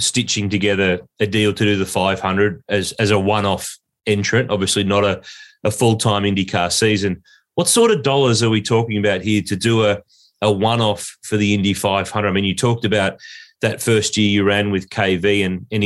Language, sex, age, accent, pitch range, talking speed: English, male, 30-49, Australian, 105-125 Hz, 195 wpm